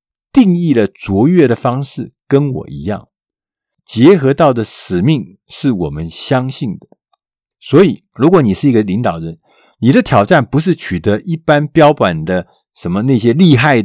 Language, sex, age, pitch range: Chinese, male, 50-69, 95-155 Hz